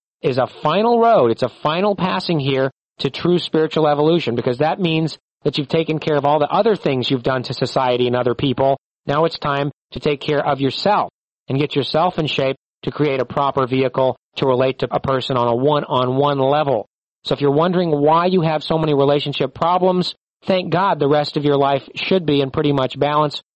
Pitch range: 135-160 Hz